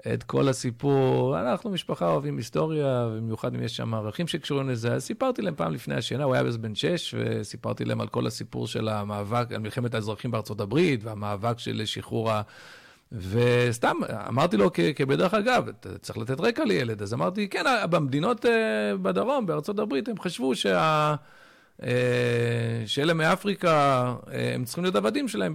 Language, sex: Hebrew, male